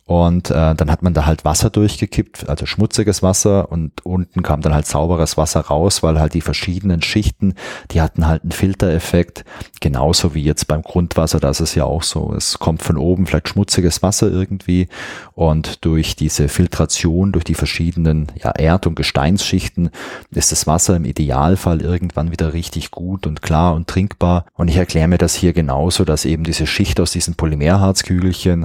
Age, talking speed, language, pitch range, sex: 30-49, 180 wpm, German, 80-95 Hz, male